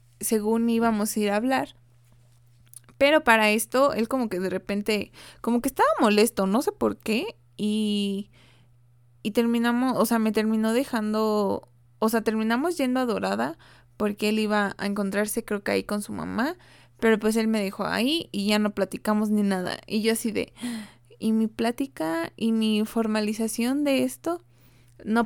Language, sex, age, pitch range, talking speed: Spanish, female, 20-39, 195-235 Hz, 170 wpm